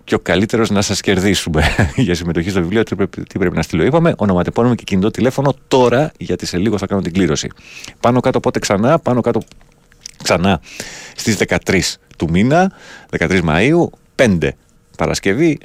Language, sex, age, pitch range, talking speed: Greek, male, 30-49, 80-120 Hz, 170 wpm